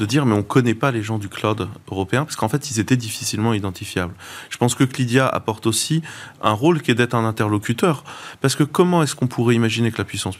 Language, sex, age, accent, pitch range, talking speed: French, male, 30-49, French, 100-130 Hz, 235 wpm